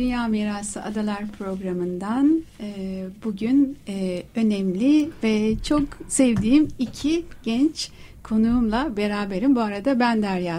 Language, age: Turkish, 60-79